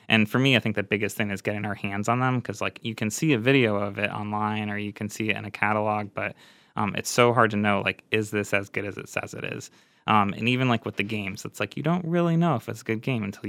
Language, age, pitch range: English, 20-39, 100-115 Hz